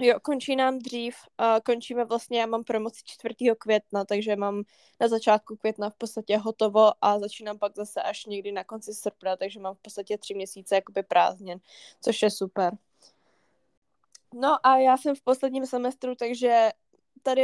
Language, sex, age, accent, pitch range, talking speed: Czech, female, 10-29, native, 210-240 Hz, 160 wpm